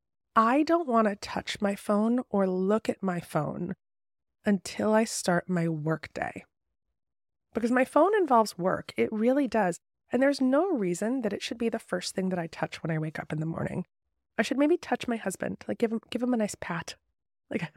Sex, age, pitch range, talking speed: female, 20-39, 185-250 Hz, 210 wpm